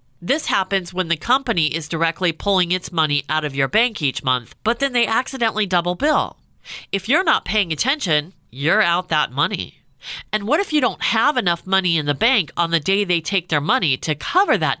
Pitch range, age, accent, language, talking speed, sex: 150-210 Hz, 40-59, American, English, 210 wpm, female